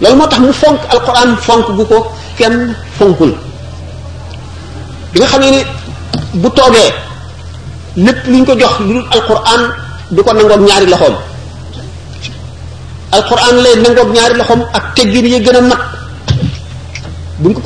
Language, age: French, 40-59